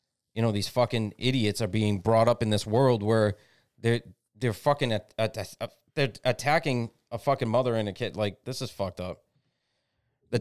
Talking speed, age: 165 wpm, 30-49